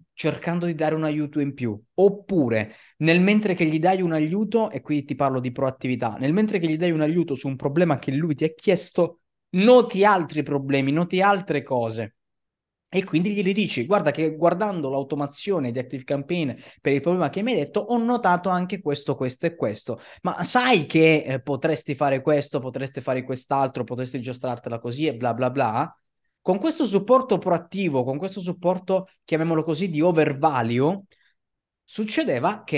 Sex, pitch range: male, 130-170 Hz